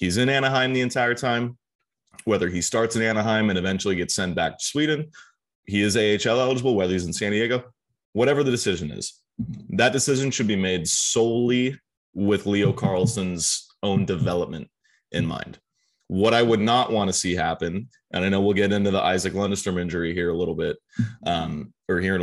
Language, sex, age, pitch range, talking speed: English, male, 20-39, 95-125 Hz, 190 wpm